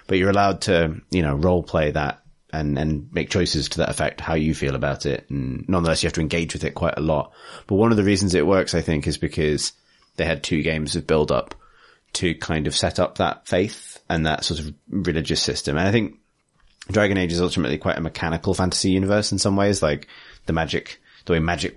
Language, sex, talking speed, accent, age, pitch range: English, male, 230 wpm, British, 30-49, 75-90 Hz